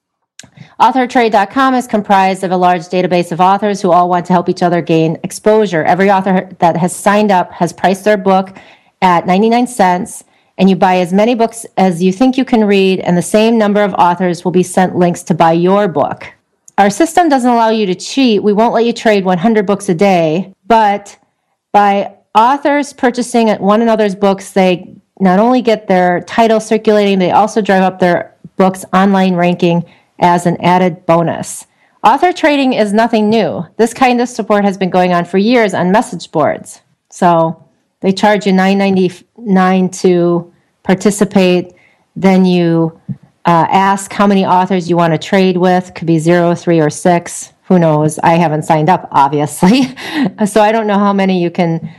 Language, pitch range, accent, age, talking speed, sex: English, 175-210 Hz, American, 40-59, 180 wpm, female